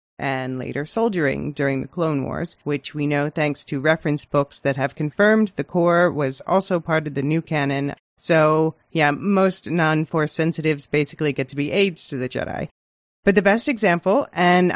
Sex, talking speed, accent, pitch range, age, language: female, 180 wpm, American, 145-185 Hz, 30-49, English